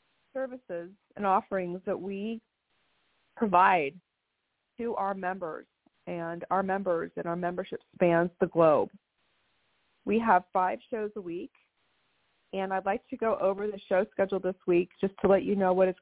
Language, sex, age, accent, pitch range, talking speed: English, female, 40-59, American, 180-210 Hz, 155 wpm